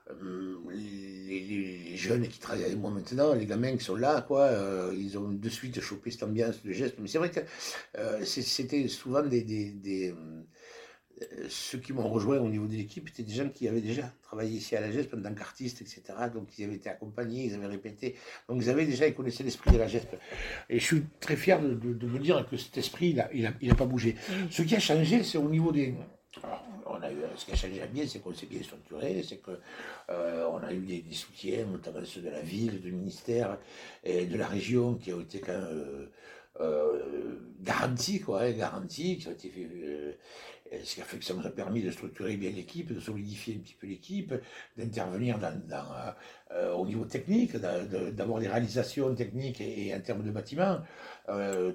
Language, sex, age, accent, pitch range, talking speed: French, male, 60-79, French, 100-140 Hz, 215 wpm